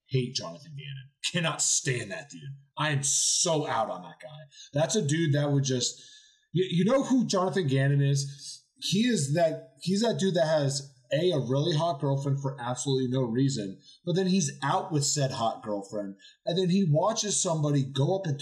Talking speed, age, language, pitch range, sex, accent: 190 wpm, 20-39, English, 125-155 Hz, male, American